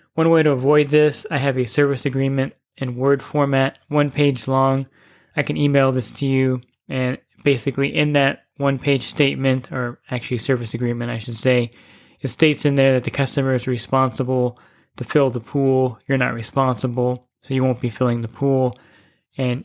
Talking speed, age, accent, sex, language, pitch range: 180 wpm, 20-39, American, male, English, 125-145 Hz